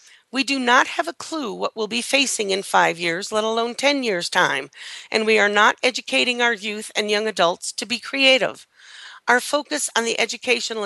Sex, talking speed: female, 200 wpm